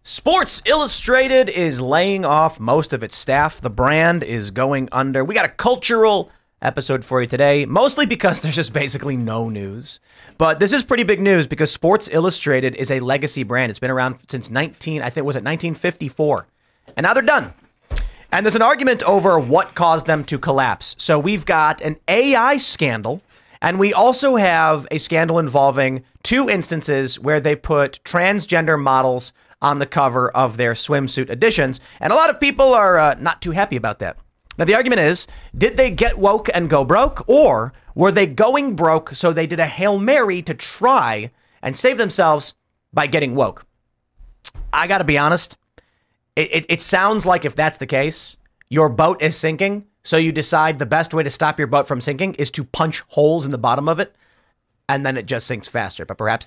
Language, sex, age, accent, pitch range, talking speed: English, male, 30-49, American, 135-185 Hz, 195 wpm